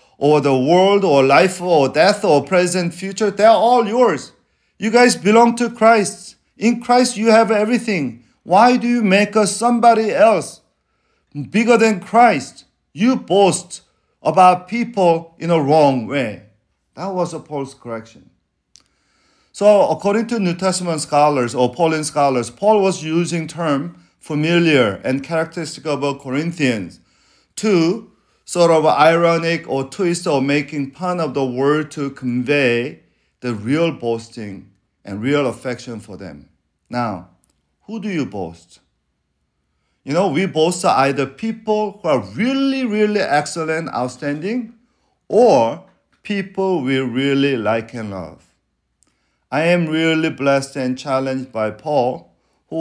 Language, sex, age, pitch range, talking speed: English, male, 40-59, 130-200 Hz, 135 wpm